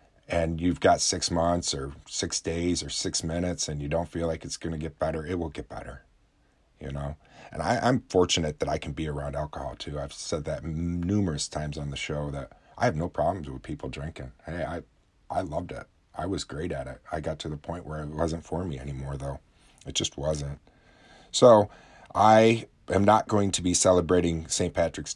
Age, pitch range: 40-59, 75-90 Hz